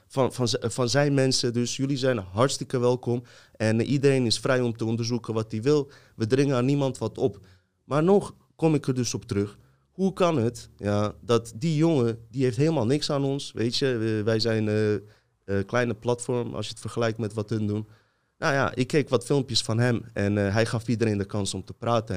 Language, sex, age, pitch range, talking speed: Dutch, male, 30-49, 100-120 Hz, 215 wpm